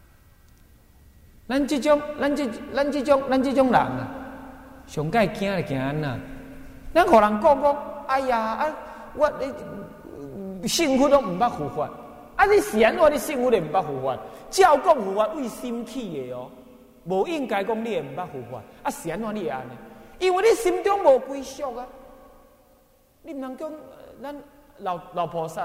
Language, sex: Chinese, male